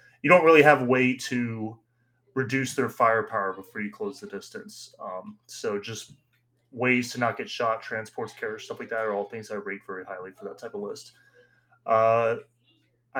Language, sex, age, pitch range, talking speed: English, male, 30-49, 115-145 Hz, 185 wpm